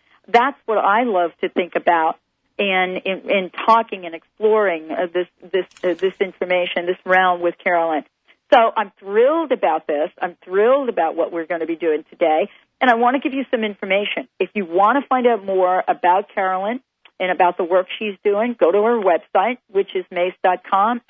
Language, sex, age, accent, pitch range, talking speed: English, female, 40-59, American, 175-215 Hz, 195 wpm